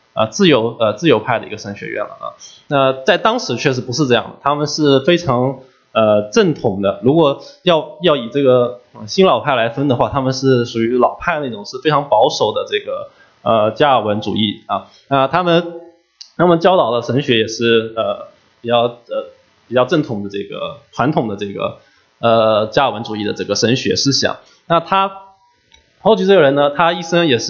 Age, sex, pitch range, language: 20-39, male, 115-150 Hz, English